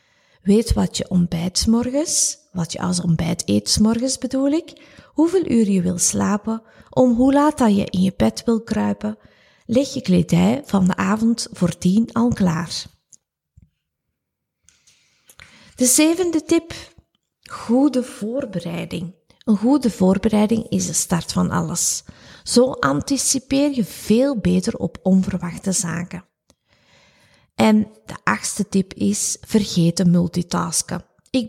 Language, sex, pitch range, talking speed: Dutch, female, 180-245 Hz, 130 wpm